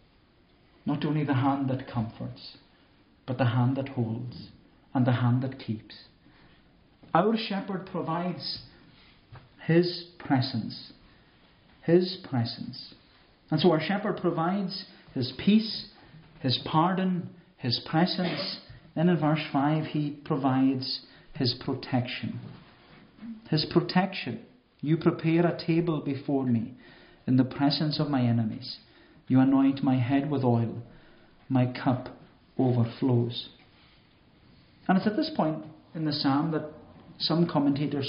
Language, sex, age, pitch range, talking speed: English, male, 50-69, 130-165 Hz, 120 wpm